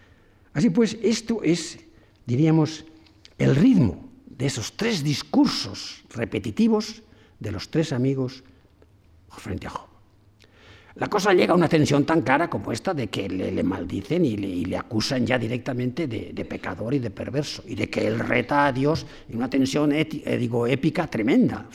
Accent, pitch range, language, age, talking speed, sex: Spanish, 105-150 Hz, Spanish, 60-79, 170 wpm, male